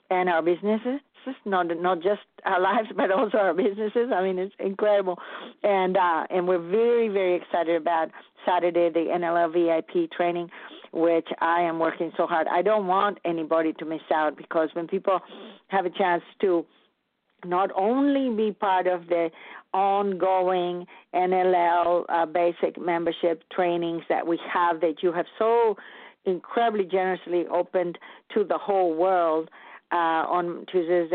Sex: female